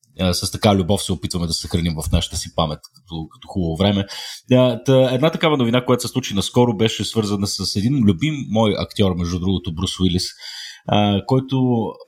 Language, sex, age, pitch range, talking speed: Bulgarian, male, 30-49, 90-115 Hz, 170 wpm